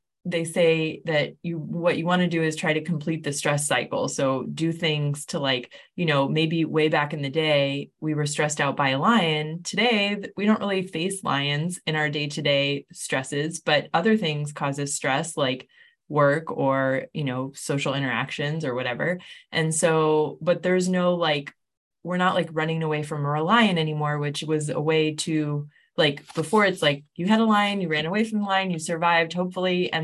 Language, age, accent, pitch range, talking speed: English, 20-39, American, 145-170 Hz, 195 wpm